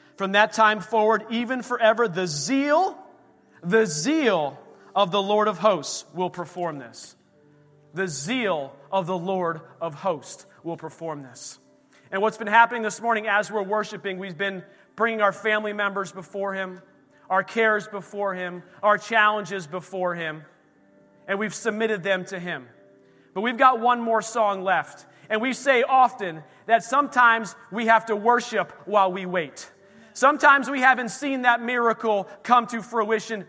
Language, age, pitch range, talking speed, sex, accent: English, 40-59, 190-250 Hz, 160 wpm, male, American